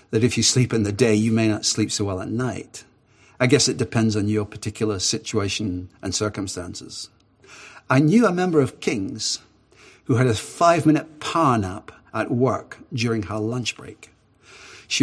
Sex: male